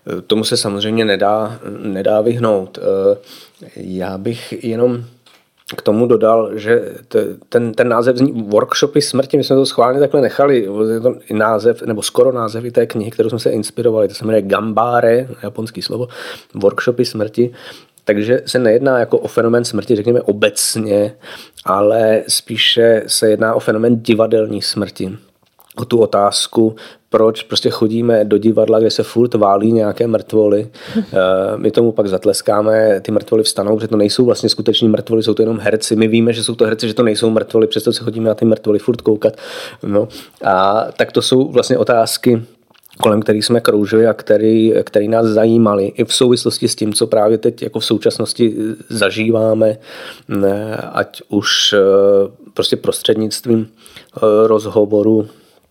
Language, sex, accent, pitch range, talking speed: Czech, male, native, 110-120 Hz, 150 wpm